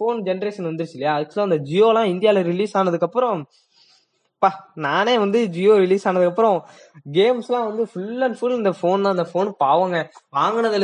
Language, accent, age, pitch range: Tamil, native, 20-39, 175-220 Hz